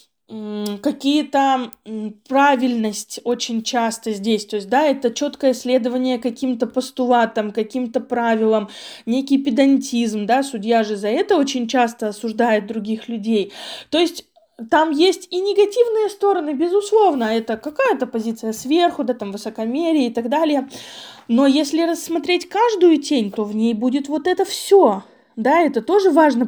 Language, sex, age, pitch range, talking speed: Russian, female, 20-39, 235-330 Hz, 140 wpm